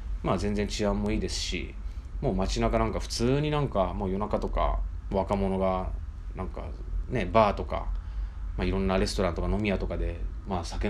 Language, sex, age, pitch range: Japanese, male, 20-39, 85-110 Hz